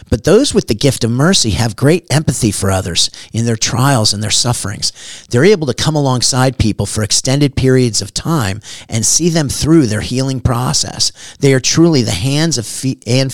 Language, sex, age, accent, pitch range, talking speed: English, male, 40-59, American, 110-140 Hz, 190 wpm